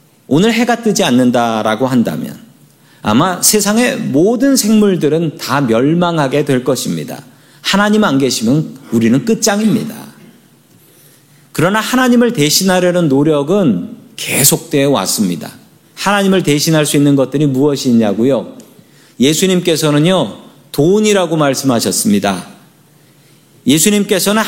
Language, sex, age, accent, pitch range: Korean, male, 40-59, native, 145-205 Hz